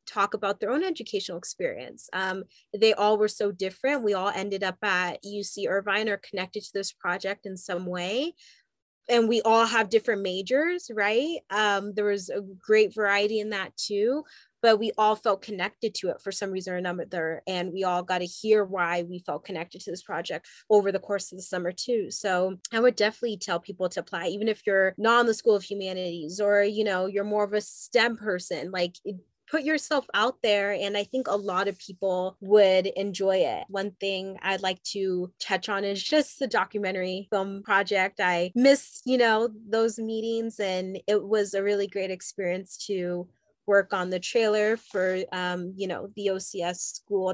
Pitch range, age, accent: 185-215 Hz, 20-39, American